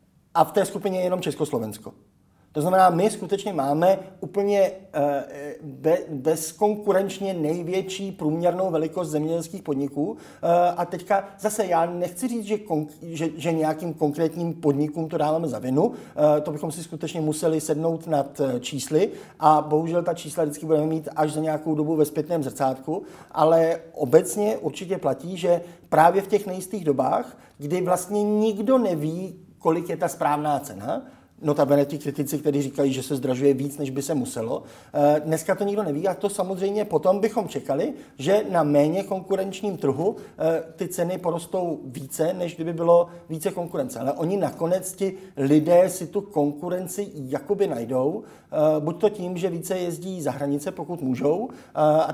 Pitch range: 145-185 Hz